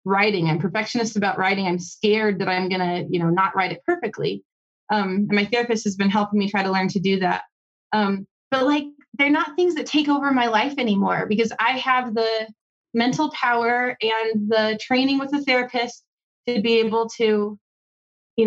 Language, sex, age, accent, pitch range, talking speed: English, female, 20-39, American, 200-260 Hz, 195 wpm